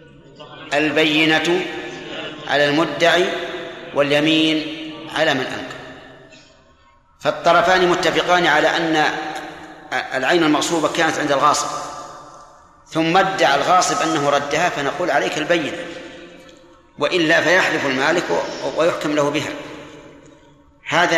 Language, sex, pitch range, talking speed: Arabic, male, 145-175 Hz, 90 wpm